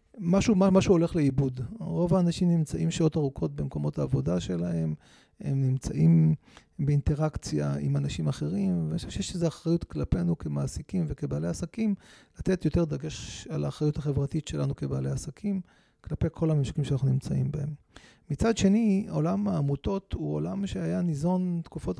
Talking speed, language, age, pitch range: 140 wpm, Hebrew, 30-49, 130-175 Hz